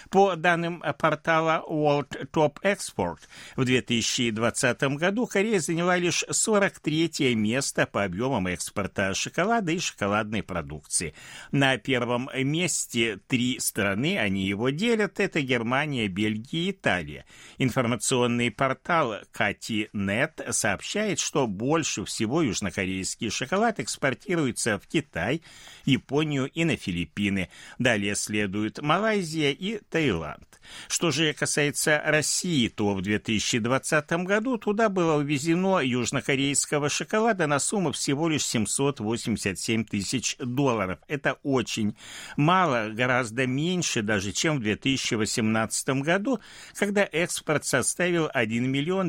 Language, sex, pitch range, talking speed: Russian, male, 110-165 Hz, 110 wpm